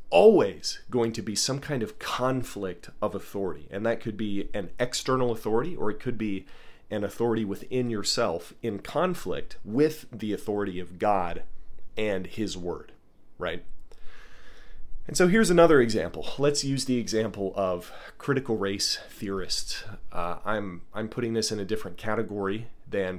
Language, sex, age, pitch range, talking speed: English, male, 30-49, 95-125 Hz, 155 wpm